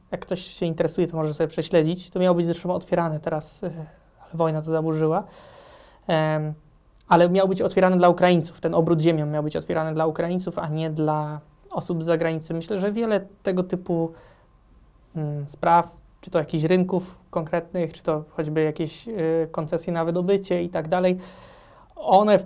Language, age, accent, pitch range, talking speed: Polish, 20-39, native, 160-180 Hz, 175 wpm